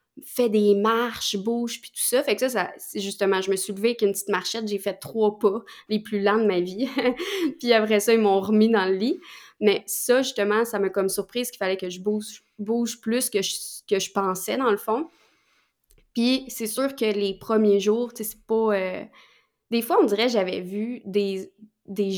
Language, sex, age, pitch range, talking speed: French, female, 20-39, 205-250 Hz, 220 wpm